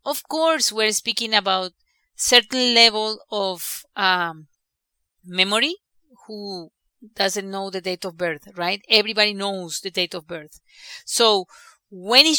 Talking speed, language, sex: 130 wpm, English, female